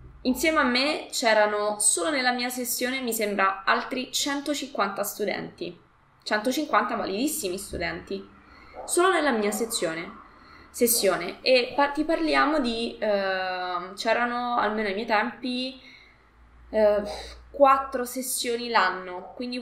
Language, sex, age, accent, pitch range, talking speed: Italian, female, 20-39, native, 205-270 Hz, 115 wpm